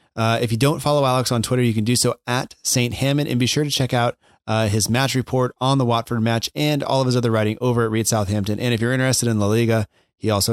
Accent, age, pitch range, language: American, 30-49, 105-125 Hz, English